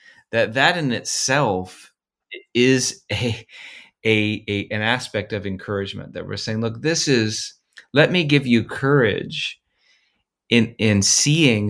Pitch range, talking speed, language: 100-135 Hz, 135 wpm, English